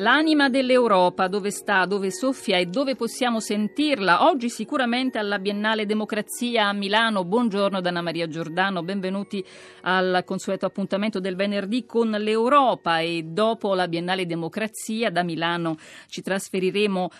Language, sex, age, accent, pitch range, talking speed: Italian, female, 40-59, native, 165-210 Hz, 135 wpm